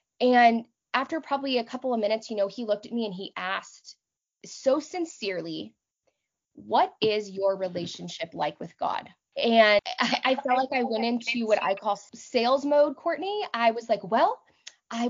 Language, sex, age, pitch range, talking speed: English, female, 20-39, 210-285 Hz, 175 wpm